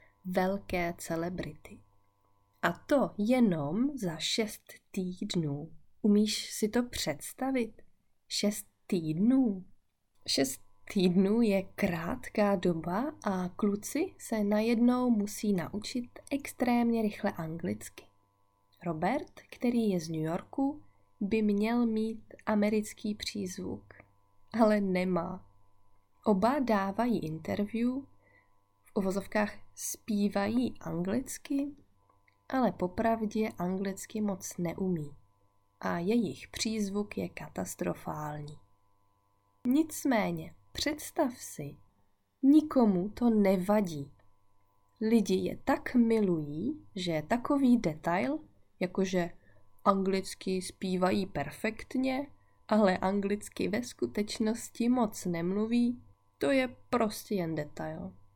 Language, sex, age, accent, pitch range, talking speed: Czech, female, 30-49, native, 150-225 Hz, 90 wpm